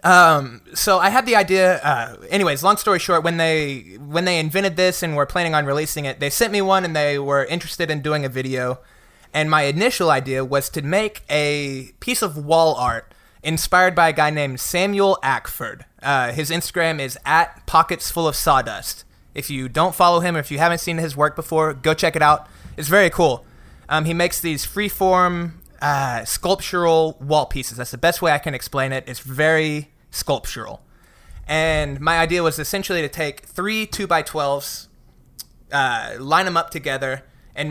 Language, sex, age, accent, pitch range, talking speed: English, male, 20-39, American, 140-175 Hz, 190 wpm